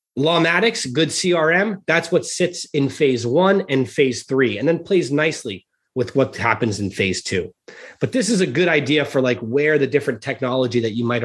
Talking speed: 195 wpm